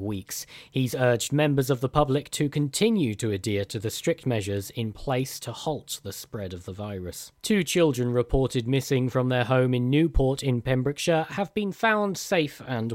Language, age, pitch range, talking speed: English, 40-59, 120-155 Hz, 185 wpm